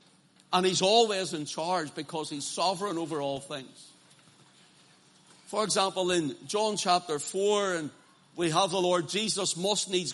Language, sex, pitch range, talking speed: English, male, 175-220 Hz, 150 wpm